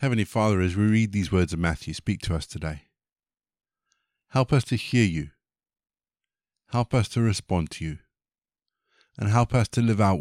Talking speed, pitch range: 175 wpm, 95-125 Hz